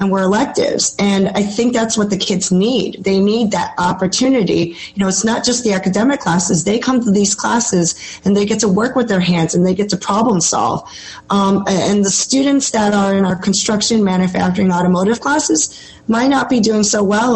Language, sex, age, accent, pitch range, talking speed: English, female, 30-49, American, 175-210 Hz, 205 wpm